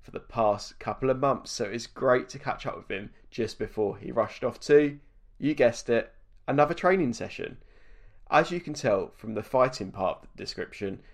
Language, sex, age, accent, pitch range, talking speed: English, male, 20-39, British, 100-130 Hz, 200 wpm